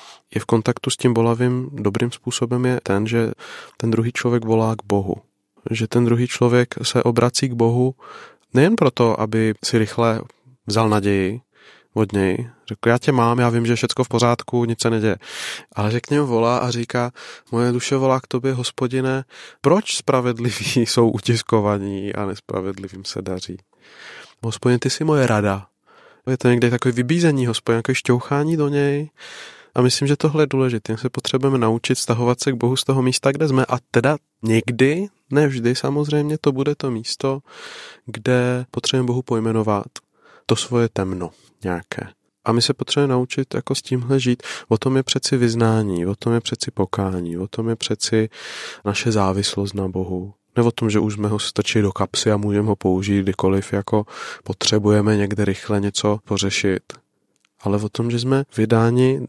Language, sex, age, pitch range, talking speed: Czech, male, 20-39, 105-125 Hz, 175 wpm